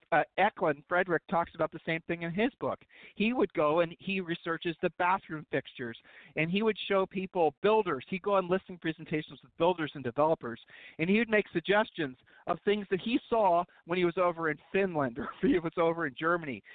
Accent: American